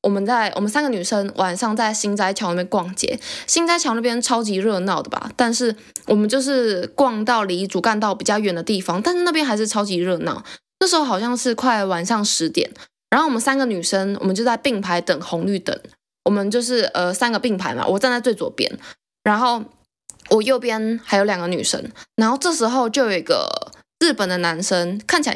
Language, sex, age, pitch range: Chinese, female, 10-29, 200-265 Hz